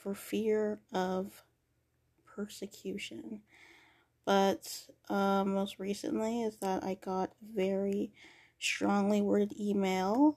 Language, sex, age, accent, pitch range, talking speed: English, female, 20-39, American, 195-235 Hz, 95 wpm